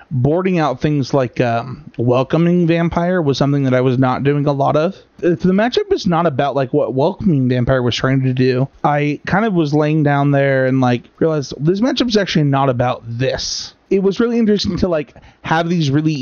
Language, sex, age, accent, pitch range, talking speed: English, male, 30-49, American, 130-165 Hz, 210 wpm